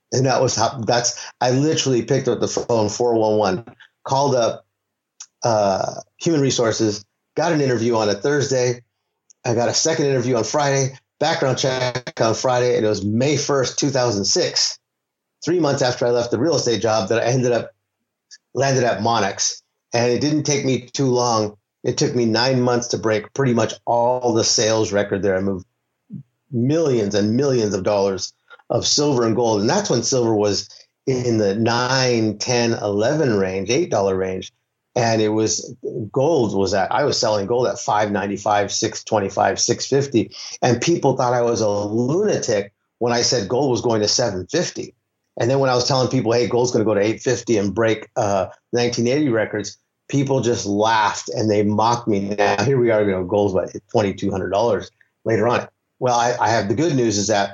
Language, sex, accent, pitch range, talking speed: English, male, American, 105-125 Hz, 190 wpm